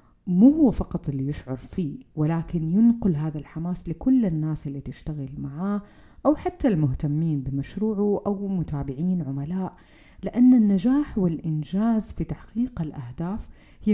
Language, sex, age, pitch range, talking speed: Arabic, female, 30-49, 150-200 Hz, 125 wpm